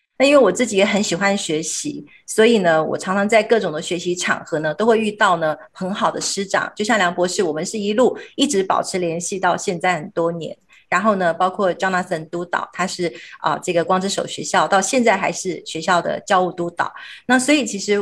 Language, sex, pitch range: Chinese, female, 180-235 Hz